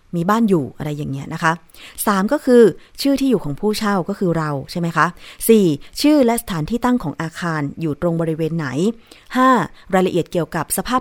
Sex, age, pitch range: female, 20-39, 160-220 Hz